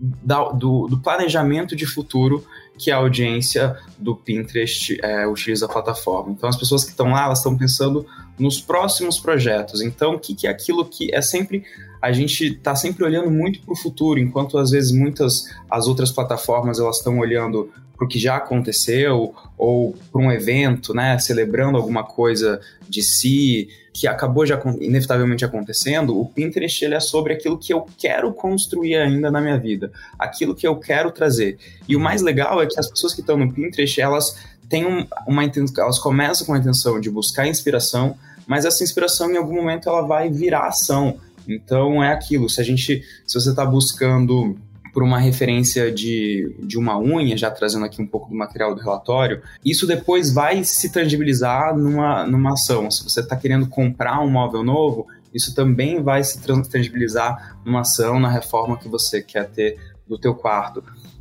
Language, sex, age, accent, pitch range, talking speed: Portuguese, male, 20-39, Brazilian, 115-145 Hz, 180 wpm